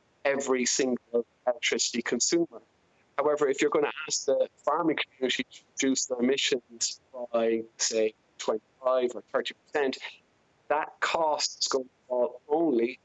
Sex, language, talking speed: male, English, 135 wpm